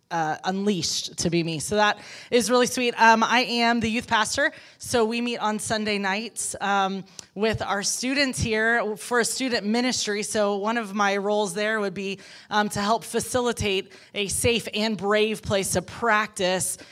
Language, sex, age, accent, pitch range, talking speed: English, female, 20-39, American, 185-220 Hz, 175 wpm